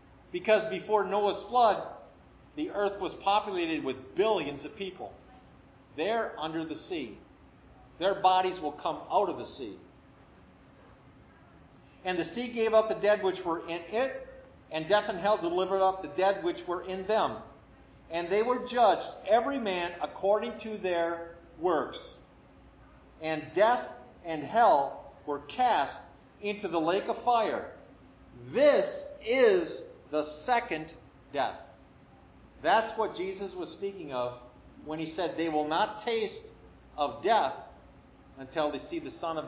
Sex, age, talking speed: male, 50-69, 145 wpm